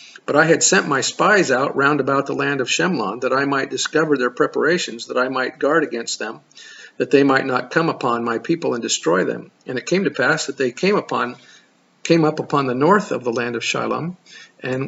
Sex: male